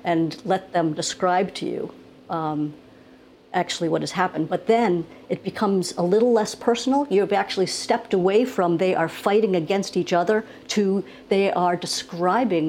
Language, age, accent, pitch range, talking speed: English, 60-79, American, 175-220 Hz, 165 wpm